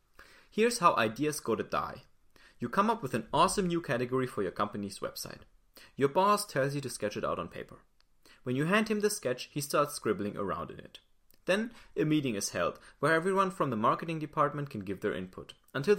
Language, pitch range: English, 115-175 Hz